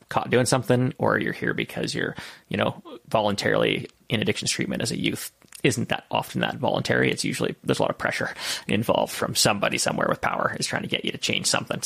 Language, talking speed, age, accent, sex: English, 220 wpm, 20-39, American, male